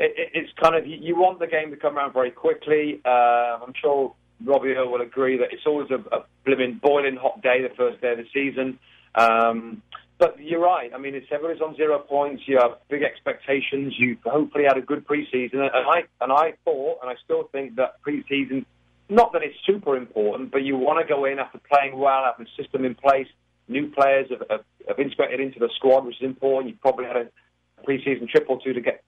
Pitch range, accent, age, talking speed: 120-155 Hz, British, 40-59, 220 wpm